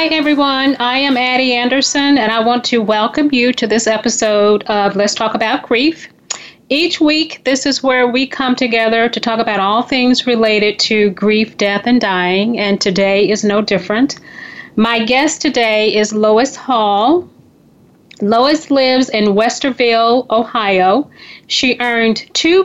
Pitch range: 215-255 Hz